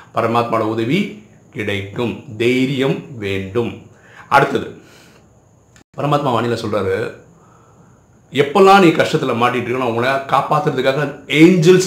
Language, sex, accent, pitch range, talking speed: Tamil, male, native, 115-165 Hz, 85 wpm